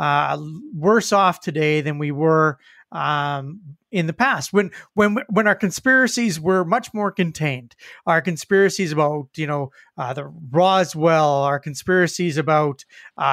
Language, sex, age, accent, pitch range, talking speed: English, male, 30-49, American, 155-200 Hz, 145 wpm